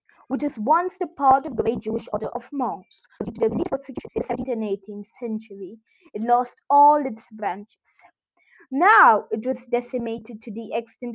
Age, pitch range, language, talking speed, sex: 20-39, 225-320 Hz, English, 160 wpm, female